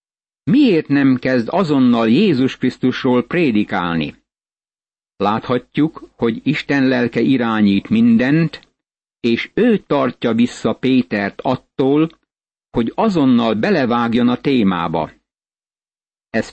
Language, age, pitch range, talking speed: Hungarian, 60-79, 115-155 Hz, 90 wpm